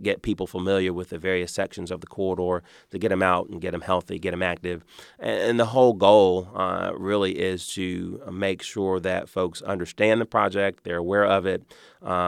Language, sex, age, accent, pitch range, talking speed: English, male, 30-49, American, 85-95 Hz, 195 wpm